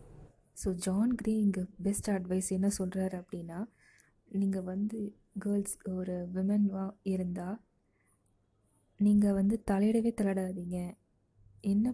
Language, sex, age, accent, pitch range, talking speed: Tamil, female, 20-39, native, 180-205 Hz, 95 wpm